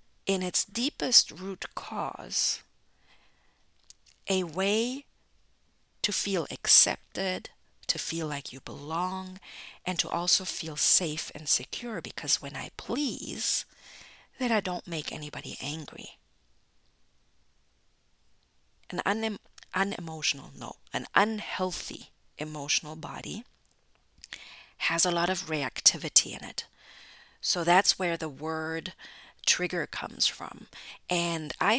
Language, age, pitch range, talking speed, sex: English, 50-69, 150-195 Hz, 110 wpm, female